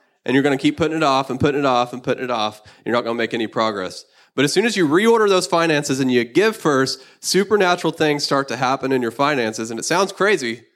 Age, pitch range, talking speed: 20-39, 125-150 Hz, 270 wpm